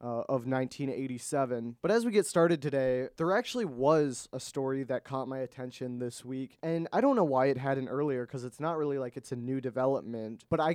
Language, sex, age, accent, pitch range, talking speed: English, male, 20-39, American, 130-155 Hz, 220 wpm